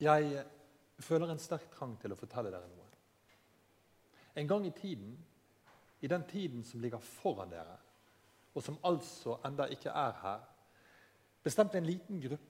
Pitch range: 110-155 Hz